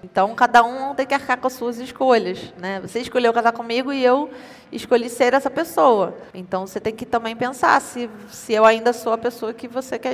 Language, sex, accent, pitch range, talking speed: Portuguese, female, Brazilian, 215-240 Hz, 220 wpm